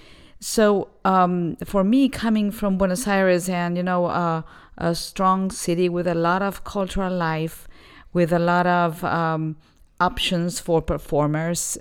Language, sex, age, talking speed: English, female, 40-59, 145 wpm